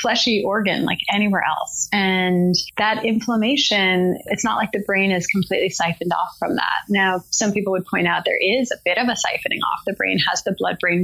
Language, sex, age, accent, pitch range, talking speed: English, female, 20-39, American, 185-220 Hz, 205 wpm